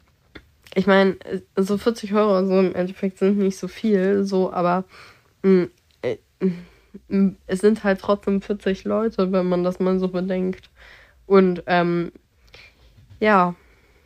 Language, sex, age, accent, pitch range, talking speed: German, female, 20-39, German, 180-210 Hz, 130 wpm